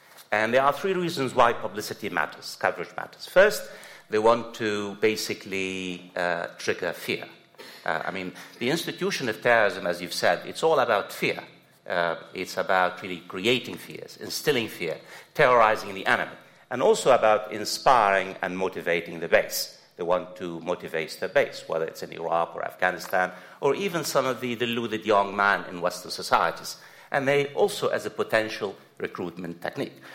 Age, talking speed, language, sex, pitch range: 60-79, 165 wpm, English, male, 90-130 Hz